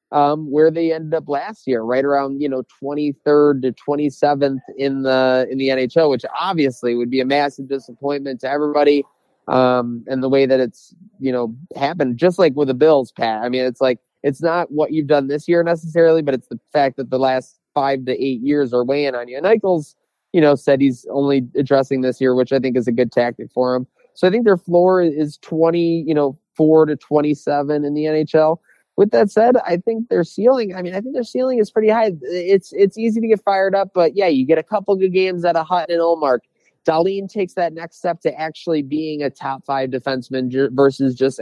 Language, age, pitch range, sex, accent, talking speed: English, 20-39, 135-170 Hz, male, American, 225 wpm